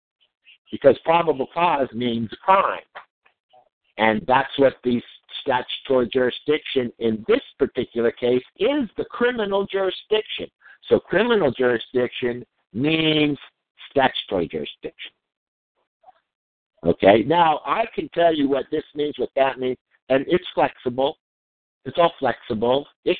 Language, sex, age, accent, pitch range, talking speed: English, male, 60-79, American, 110-145 Hz, 115 wpm